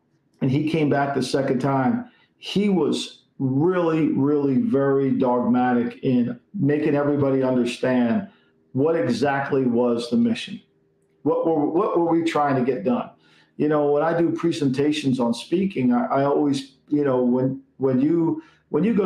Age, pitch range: 50-69, 130-165 Hz